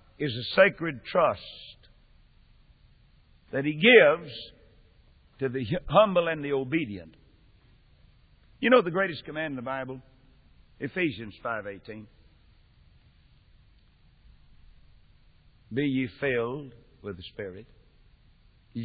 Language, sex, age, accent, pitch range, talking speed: English, male, 60-79, American, 135-190 Hz, 100 wpm